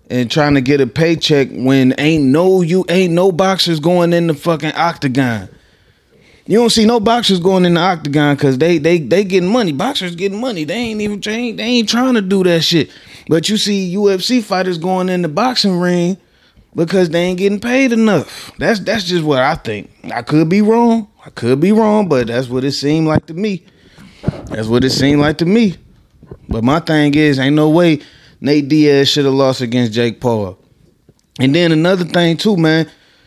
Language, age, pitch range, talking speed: English, 20-39, 145-190 Hz, 205 wpm